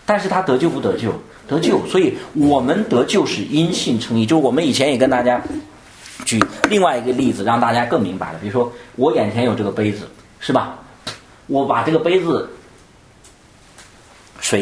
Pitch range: 110-150 Hz